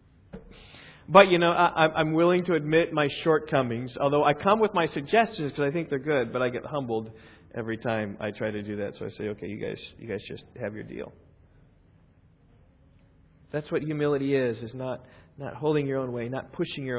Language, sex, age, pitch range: English, male, 40-59, 110-135 Hz